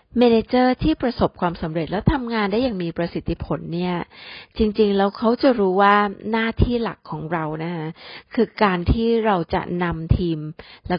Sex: female